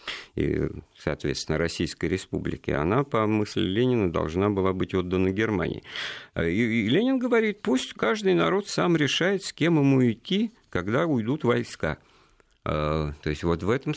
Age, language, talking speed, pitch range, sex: 50-69, Russian, 140 wpm, 85-130 Hz, male